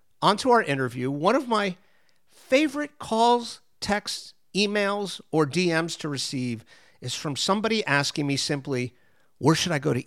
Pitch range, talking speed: 135-190 Hz, 150 wpm